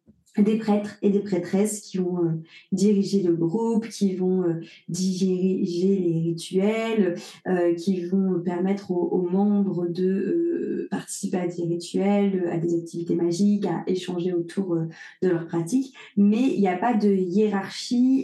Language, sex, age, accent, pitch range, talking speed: French, female, 30-49, French, 175-210 Hz, 160 wpm